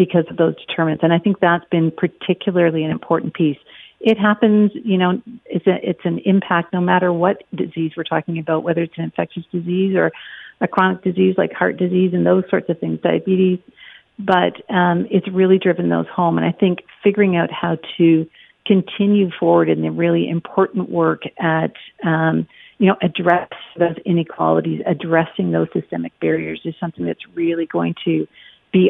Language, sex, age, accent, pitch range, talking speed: English, female, 50-69, American, 160-190 Hz, 175 wpm